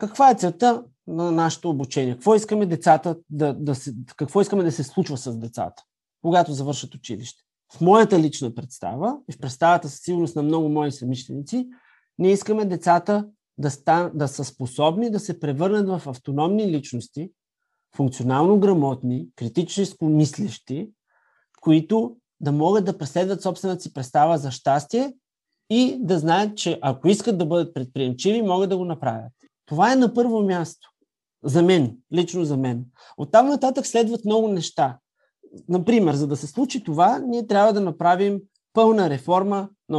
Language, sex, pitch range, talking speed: Bulgarian, male, 145-200 Hz, 160 wpm